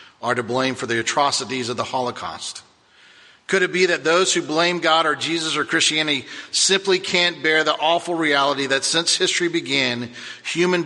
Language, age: English, 50-69